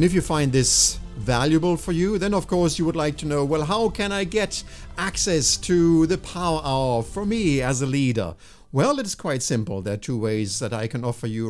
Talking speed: 230 wpm